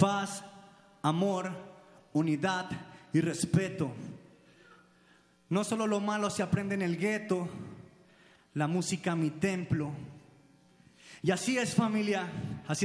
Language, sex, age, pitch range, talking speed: Spanish, male, 30-49, 180-205 Hz, 105 wpm